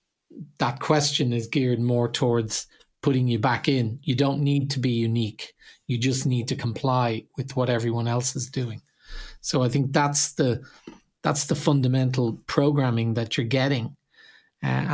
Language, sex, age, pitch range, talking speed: English, male, 50-69, 125-140 Hz, 160 wpm